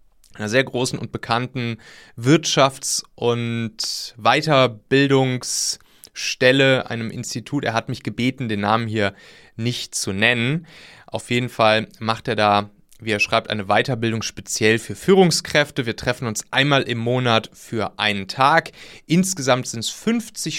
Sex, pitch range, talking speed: male, 110-140 Hz, 135 wpm